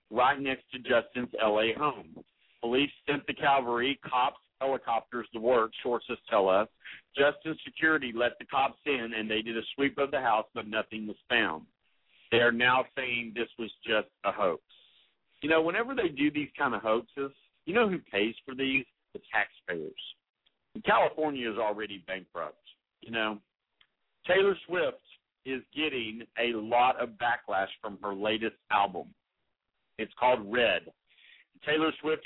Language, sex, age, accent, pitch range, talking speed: English, male, 50-69, American, 115-145 Hz, 155 wpm